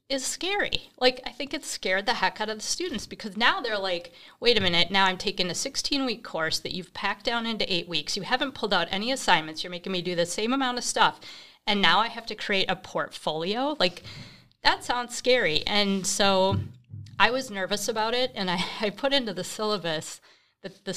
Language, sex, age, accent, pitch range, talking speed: English, female, 30-49, American, 175-215 Hz, 220 wpm